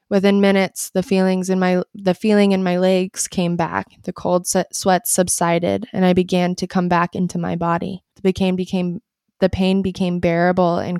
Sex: female